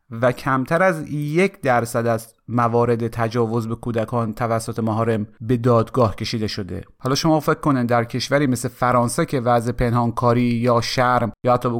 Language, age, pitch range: Persian, 30-49, 120-155 Hz